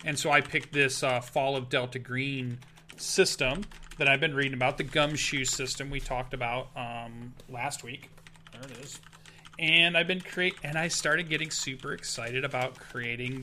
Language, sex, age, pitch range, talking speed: English, male, 30-49, 125-150 Hz, 180 wpm